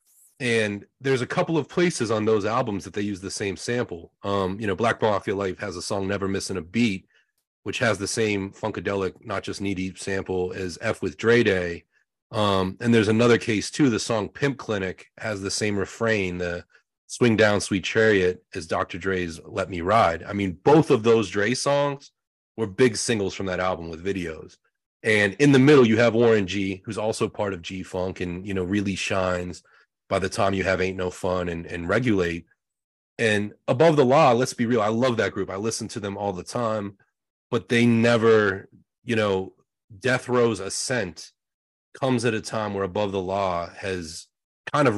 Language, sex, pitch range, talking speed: English, male, 95-115 Hz, 200 wpm